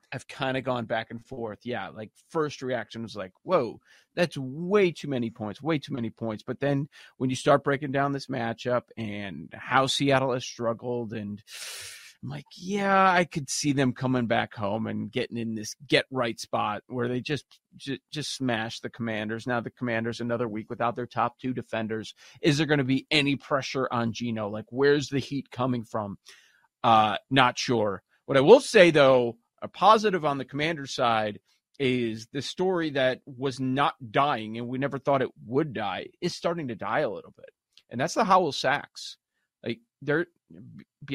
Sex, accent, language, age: male, American, English, 30-49